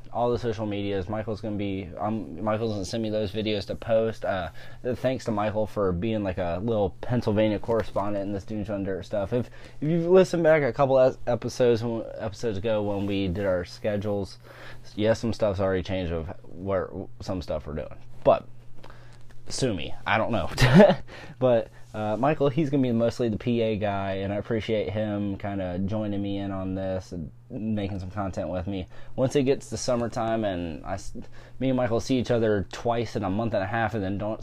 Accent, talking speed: American, 205 wpm